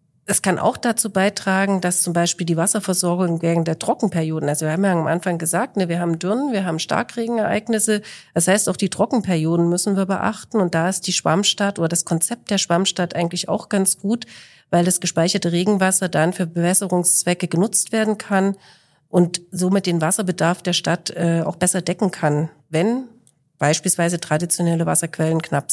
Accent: German